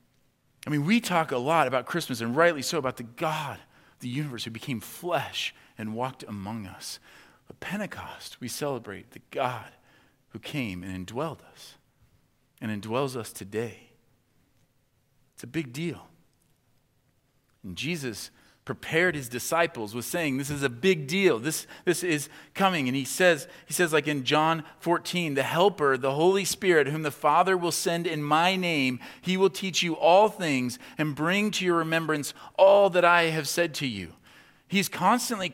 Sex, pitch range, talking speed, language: male, 130-175 Hz, 170 wpm, English